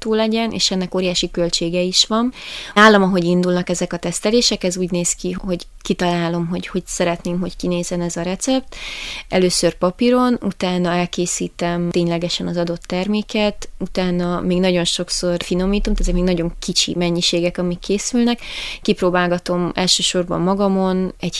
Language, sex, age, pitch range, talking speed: Hungarian, female, 20-39, 170-185 Hz, 145 wpm